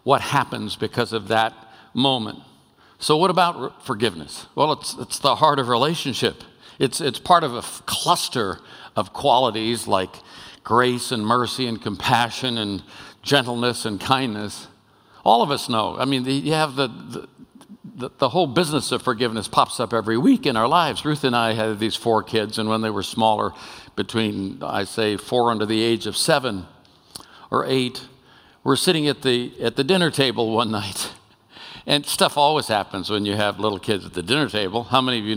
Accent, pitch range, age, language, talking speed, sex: American, 110-135 Hz, 60-79, English, 185 wpm, male